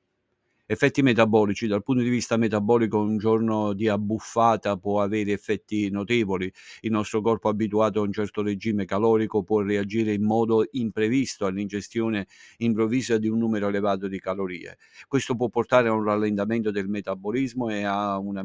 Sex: male